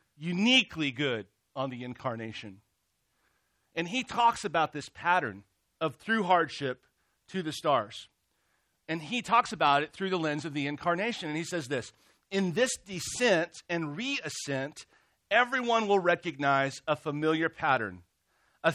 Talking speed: 140 wpm